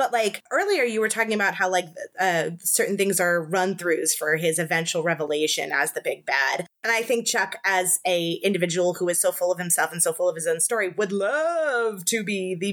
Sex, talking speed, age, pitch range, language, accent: female, 225 wpm, 20-39, 175-225 Hz, English, American